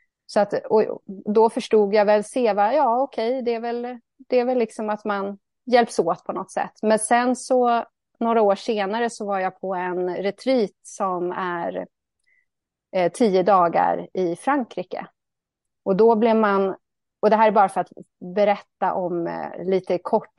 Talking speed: 160 wpm